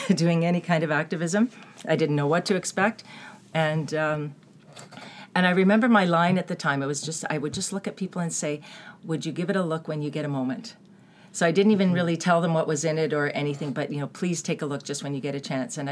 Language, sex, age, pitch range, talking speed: English, female, 40-59, 150-195 Hz, 265 wpm